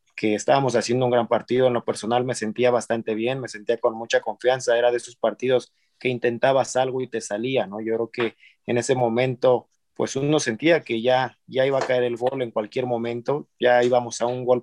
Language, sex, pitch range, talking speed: Spanish, male, 120-135 Hz, 220 wpm